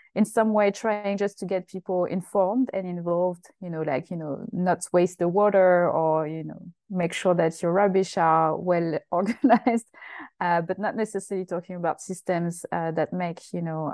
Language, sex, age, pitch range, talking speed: English, female, 30-49, 170-190 Hz, 185 wpm